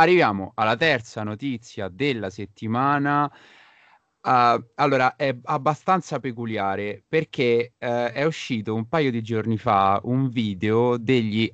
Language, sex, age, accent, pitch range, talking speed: Italian, male, 30-49, native, 100-135 Hz, 110 wpm